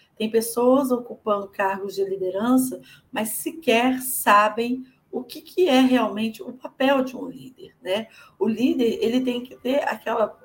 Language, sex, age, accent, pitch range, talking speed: Portuguese, female, 50-69, Brazilian, 210-265 Hz, 145 wpm